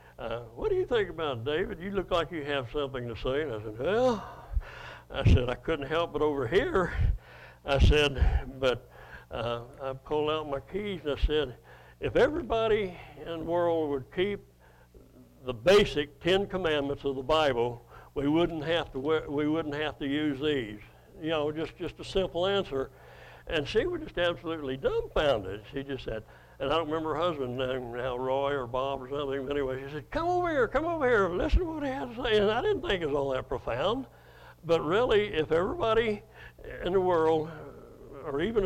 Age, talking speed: 60-79, 200 wpm